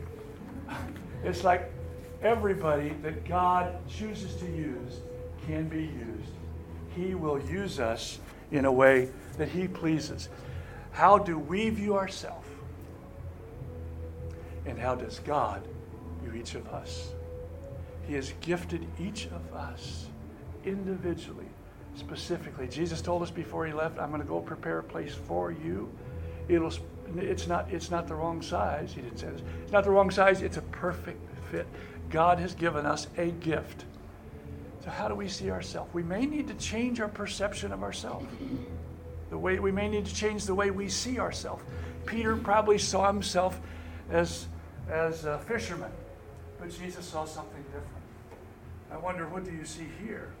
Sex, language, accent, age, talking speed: male, English, American, 60-79, 155 wpm